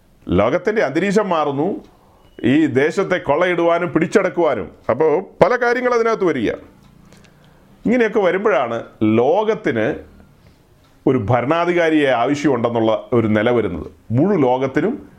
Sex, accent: male, native